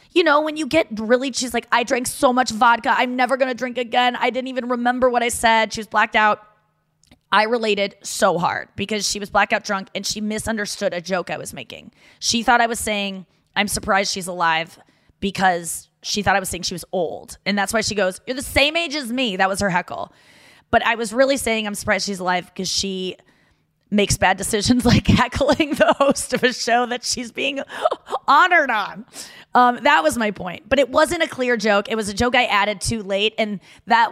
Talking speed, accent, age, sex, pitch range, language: 225 wpm, American, 20-39, female, 195-250 Hz, English